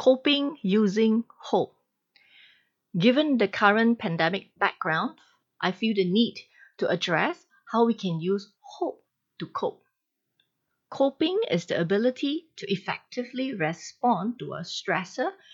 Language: English